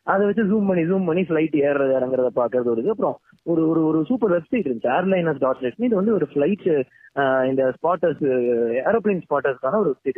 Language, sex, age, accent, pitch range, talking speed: Tamil, male, 30-49, native, 155-235 Hz, 165 wpm